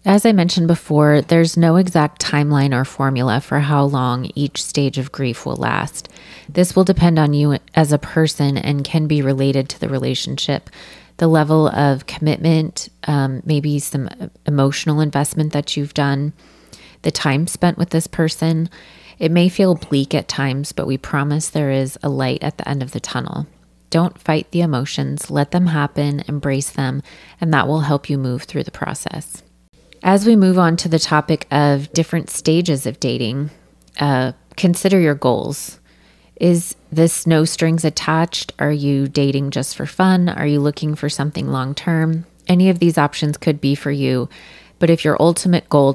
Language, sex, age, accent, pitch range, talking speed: English, female, 20-39, American, 135-160 Hz, 175 wpm